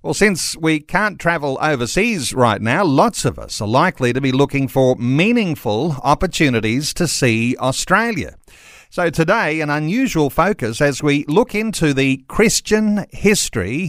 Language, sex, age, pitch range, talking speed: English, male, 50-69, 130-175 Hz, 145 wpm